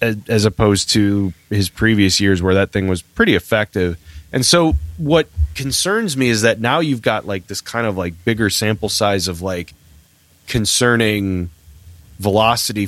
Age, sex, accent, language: 30-49, male, American, English